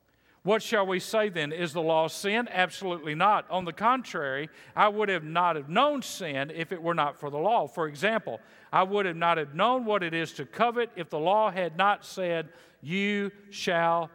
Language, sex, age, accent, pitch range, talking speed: English, male, 50-69, American, 165-215 Hz, 210 wpm